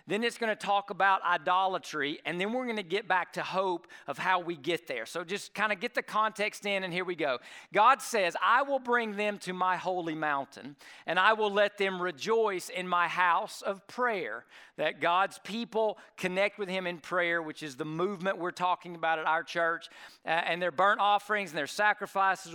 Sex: male